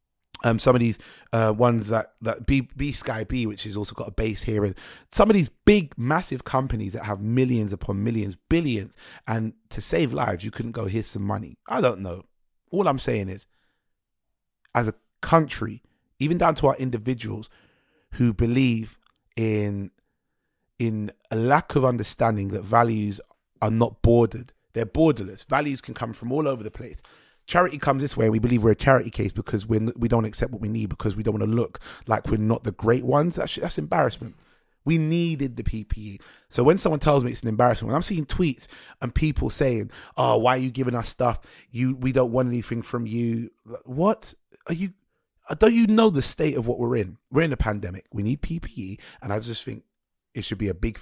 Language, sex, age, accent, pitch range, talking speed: English, male, 30-49, British, 110-135 Hz, 205 wpm